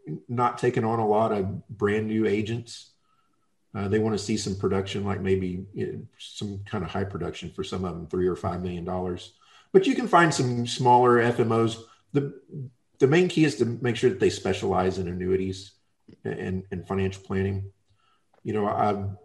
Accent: American